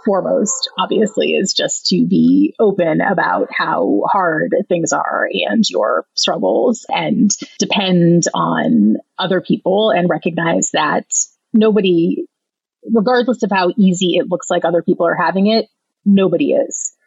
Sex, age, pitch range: female, 30-49, 170-225 Hz